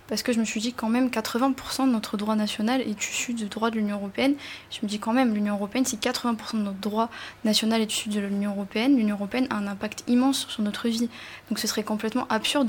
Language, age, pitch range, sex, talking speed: French, 10-29, 210-245 Hz, female, 250 wpm